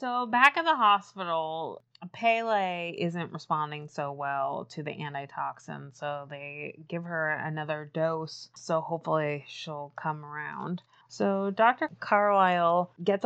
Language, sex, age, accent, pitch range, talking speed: English, female, 20-39, American, 150-180 Hz, 125 wpm